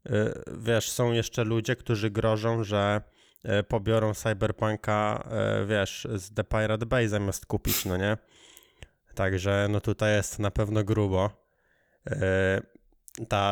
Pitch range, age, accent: 105-120 Hz, 20-39, native